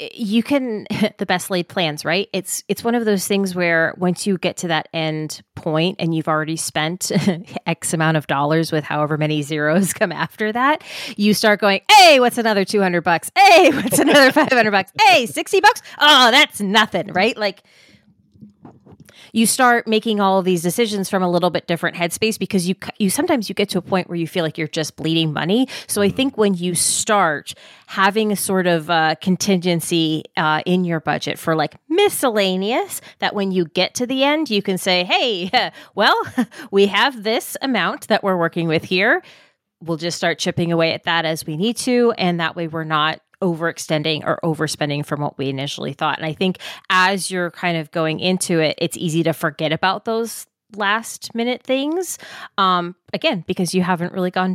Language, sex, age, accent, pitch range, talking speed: English, female, 20-39, American, 165-215 Hz, 195 wpm